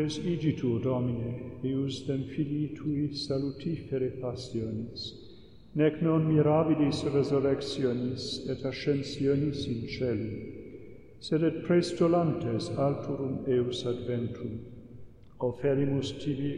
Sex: male